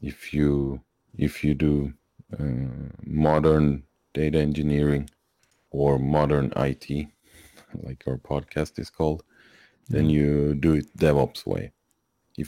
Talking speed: 115 wpm